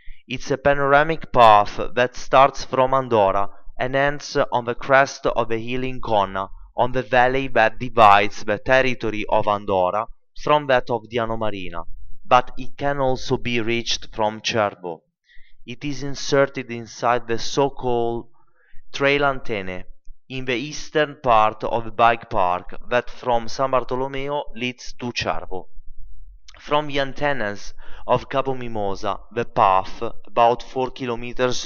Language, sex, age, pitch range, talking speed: Italian, male, 30-49, 110-130 Hz, 140 wpm